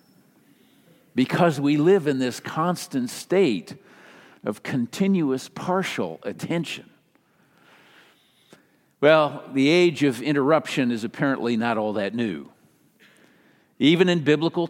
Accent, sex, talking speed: American, male, 100 wpm